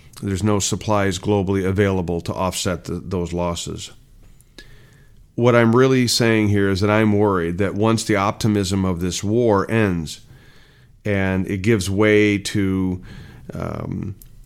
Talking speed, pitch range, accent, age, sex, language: 135 wpm, 90-105 Hz, American, 40-59, male, English